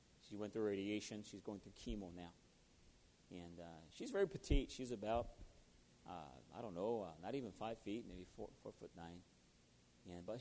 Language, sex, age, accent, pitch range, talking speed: English, male, 40-59, American, 80-110 Hz, 185 wpm